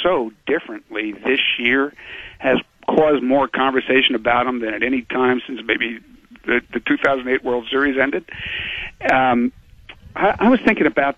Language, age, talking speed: English, 60-79, 150 wpm